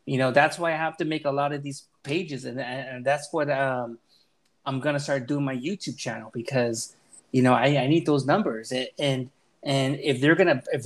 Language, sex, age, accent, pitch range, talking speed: English, male, 30-49, American, 130-165 Hz, 210 wpm